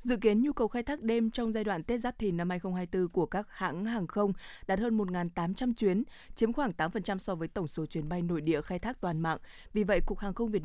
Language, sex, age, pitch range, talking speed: Vietnamese, female, 20-39, 170-215 Hz, 255 wpm